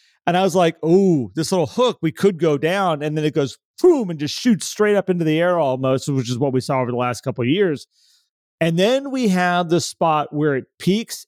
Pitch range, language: 135-165 Hz, English